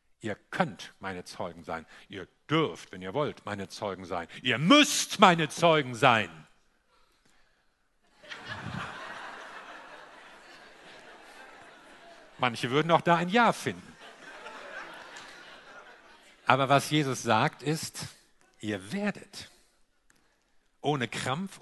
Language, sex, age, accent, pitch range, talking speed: German, male, 50-69, German, 130-175 Hz, 95 wpm